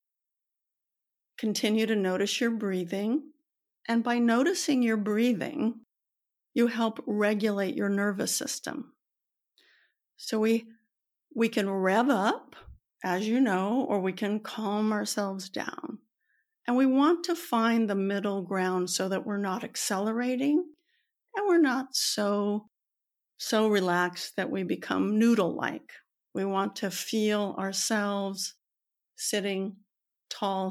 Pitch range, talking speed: 200-250 Hz, 120 wpm